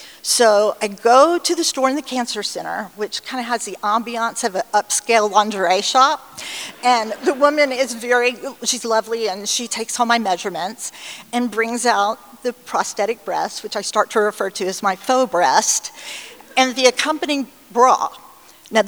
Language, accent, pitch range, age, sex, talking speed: English, American, 205-260 Hz, 50-69, female, 175 wpm